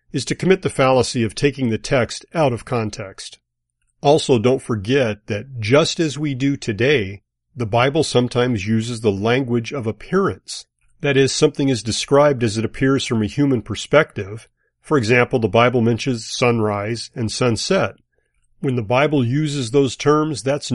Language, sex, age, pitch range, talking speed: English, male, 40-59, 110-140 Hz, 160 wpm